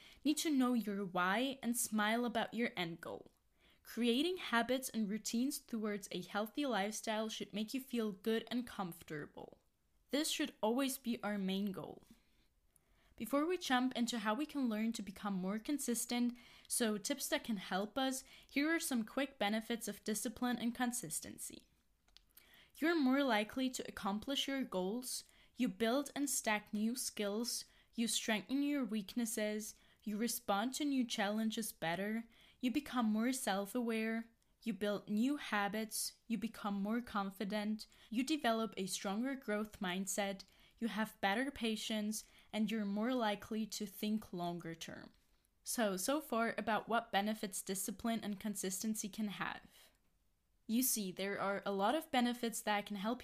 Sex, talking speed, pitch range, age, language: female, 150 wpm, 205-245 Hz, 10-29, English